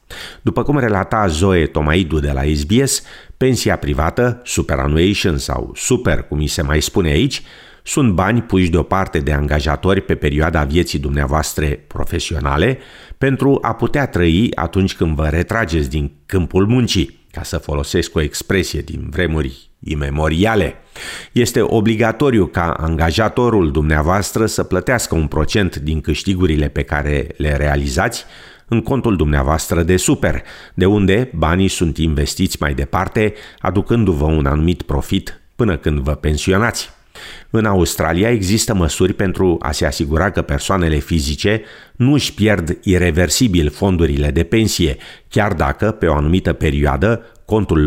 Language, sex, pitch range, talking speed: Romanian, male, 75-100 Hz, 135 wpm